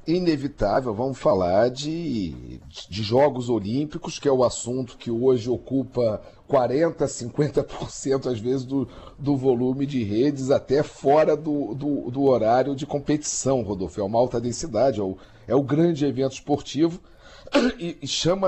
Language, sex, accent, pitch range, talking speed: Portuguese, male, Brazilian, 130-180 Hz, 145 wpm